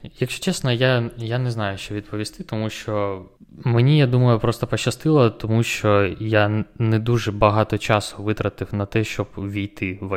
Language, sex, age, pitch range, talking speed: Ukrainian, male, 20-39, 100-120 Hz, 165 wpm